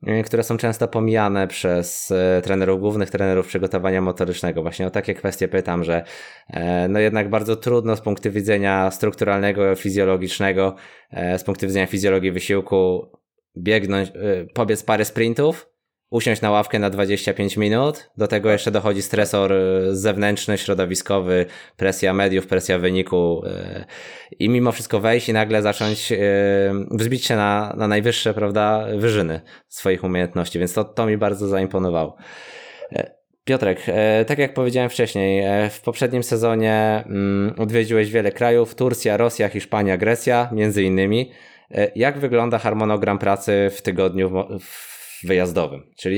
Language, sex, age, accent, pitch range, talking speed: Polish, male, 20-39, native, 95-110 Hz, 130 wpm